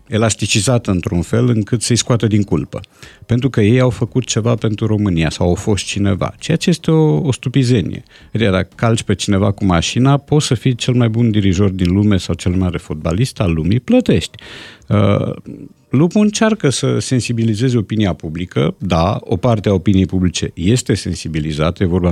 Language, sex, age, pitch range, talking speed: Romanian, male, 50-69, 90-125 Hz, 180 wpm